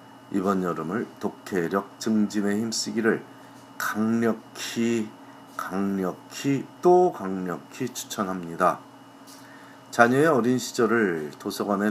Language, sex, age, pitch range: Korean, male, 40-59, 90-130 Hz